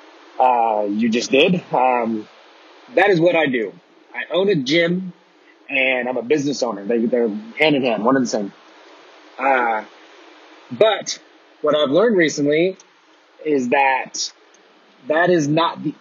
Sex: male